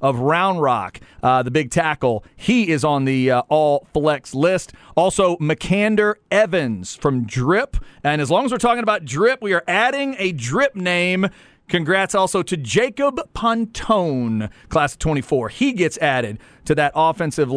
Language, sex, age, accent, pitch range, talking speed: English, male, 40-59, American, 140-190 Hz, 160 wpm